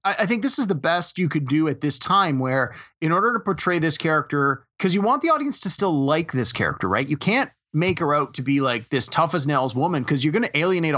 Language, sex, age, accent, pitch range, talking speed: English, male, 30-49, American, 135-175 Hz, 265 wpm